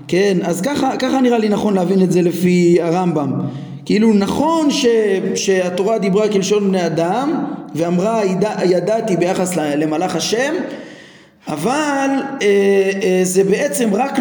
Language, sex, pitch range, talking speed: Hebrew, male, 180-250 Hz, 135 wpm